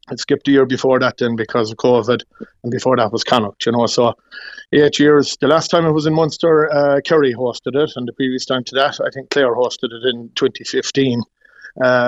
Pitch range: 120-135 Hz